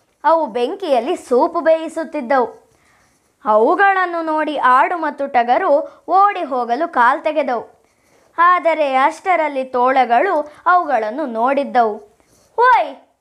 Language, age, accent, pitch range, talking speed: Kannada, 20-39, native, 275-380 Hz, 85 wpm